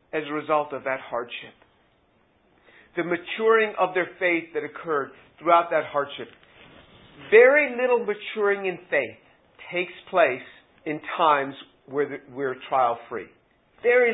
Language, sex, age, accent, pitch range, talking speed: English, male, 50-69, American, 185-255 Hz, 125 wpm